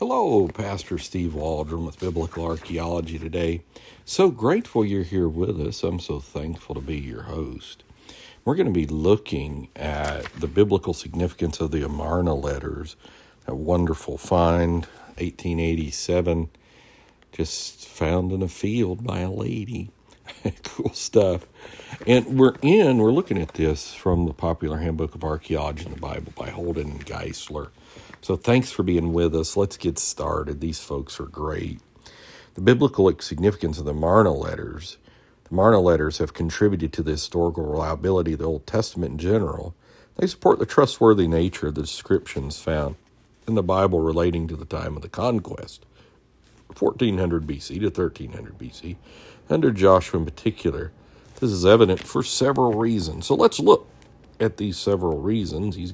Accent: American